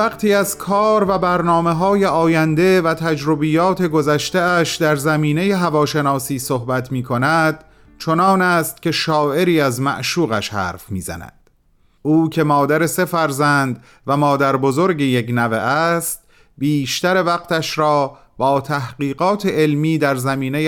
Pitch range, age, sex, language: 125-170 Hz, 30-49, male, Persian